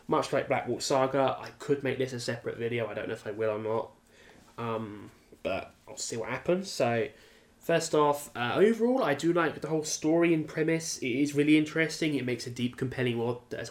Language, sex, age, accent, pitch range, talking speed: English, male, 10-29, British, 120-150 Hz, 215 wpm